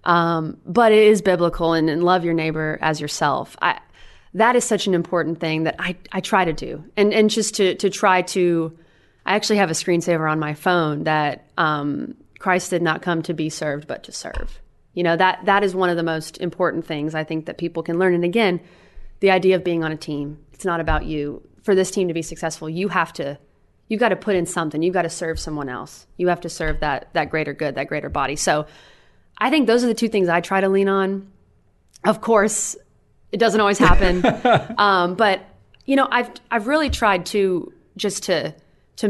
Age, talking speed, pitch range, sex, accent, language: 30-49, 225 wpm, 160-195 Hz, female, American, English